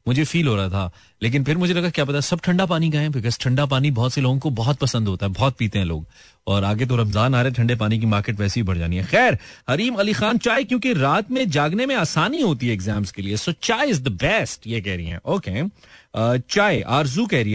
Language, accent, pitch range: Hindi, native, 120-195 Hz